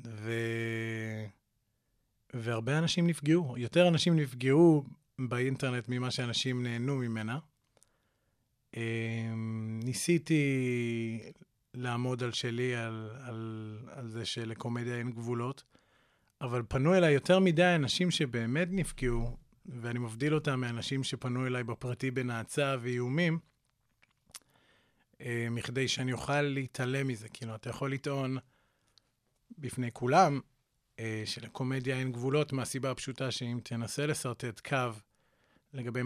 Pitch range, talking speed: 115-135 Hz, 100 wpm